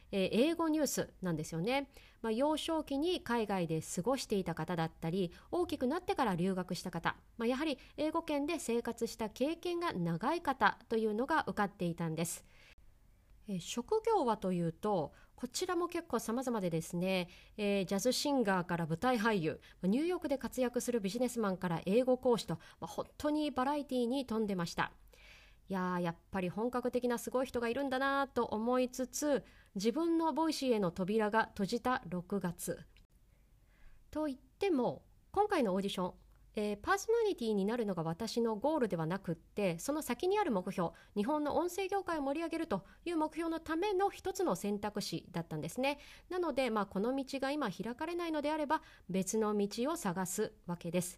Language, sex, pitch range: Japanese, female, 190-290 Hz